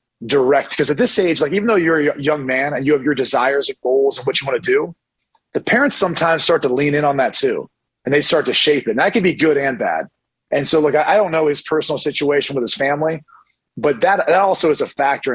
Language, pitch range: English, 135-160 Hz